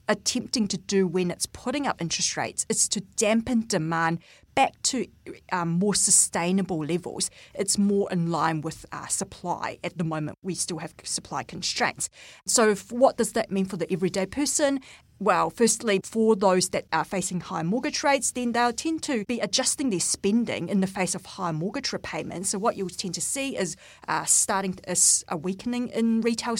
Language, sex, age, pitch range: English, female, 40-59, 175-230 Hz